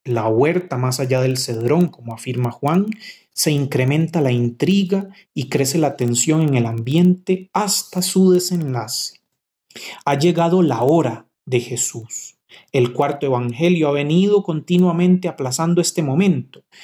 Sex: male